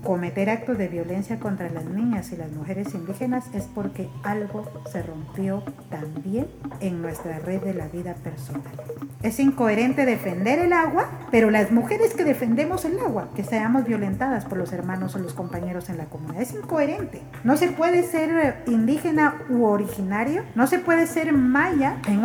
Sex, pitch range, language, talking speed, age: female, 185-255 Hz, Spanish, 170 wpm, 40-59